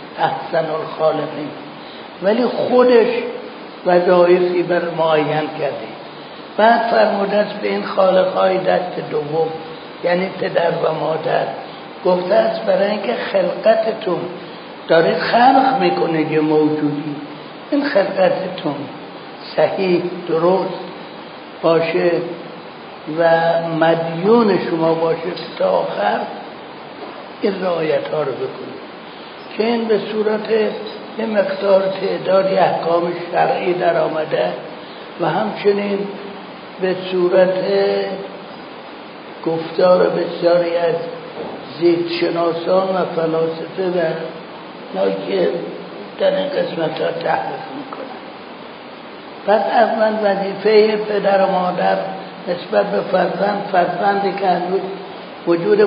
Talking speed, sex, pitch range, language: 95 wpm, male, 165-195 Hz, Persian